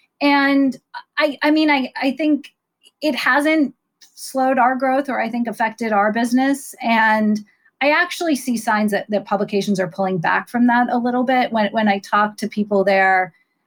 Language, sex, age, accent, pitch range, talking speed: English, female, 30-49, American, 195-250 Hz, 180 wpm